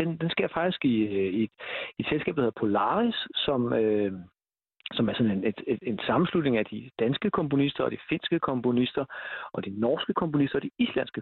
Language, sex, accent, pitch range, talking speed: Danish, male, native, 140-200 Hz, 195 wpm